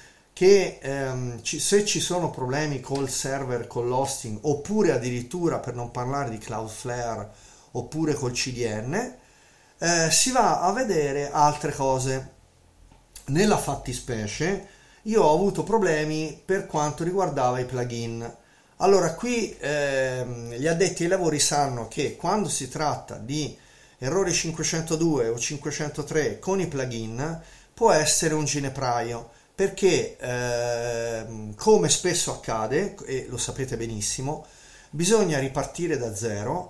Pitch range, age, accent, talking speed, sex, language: 125-170 Hz, 40-59, native, 125 wpm, male, Italian